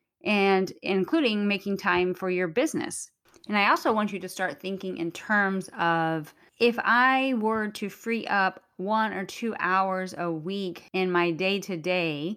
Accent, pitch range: American, 170-200 Hz